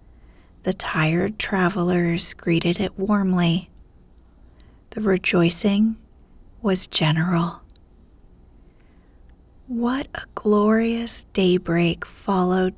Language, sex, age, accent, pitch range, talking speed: English, female, 40-59, American, 150-205 Hz, 70 wpm